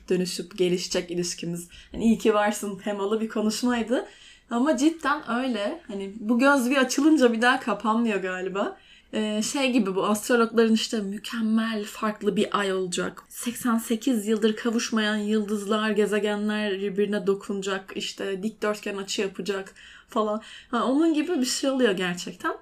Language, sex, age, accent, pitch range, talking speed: Turkish, female, 10-29, native, 195-250 Hz, 140 wpm